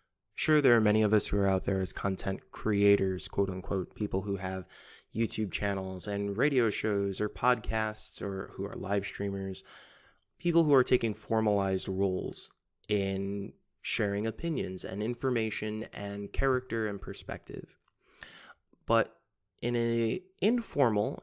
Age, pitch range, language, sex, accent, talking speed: 20-39, 100-125 Hz, English, male, American, 140 wpm